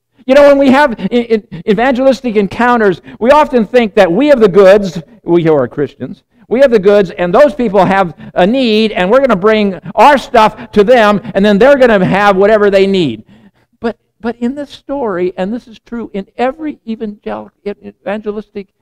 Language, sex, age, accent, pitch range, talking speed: English, male, 60-79, American, 160-250 Hz, 180 wpm